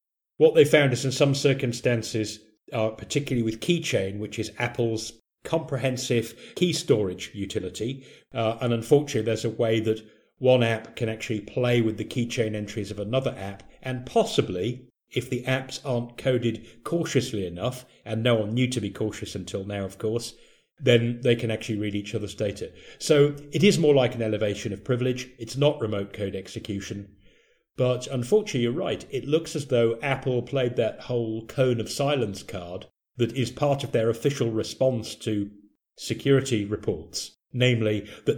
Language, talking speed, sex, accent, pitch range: English, 165 wpm, male, British, 110-130 Hz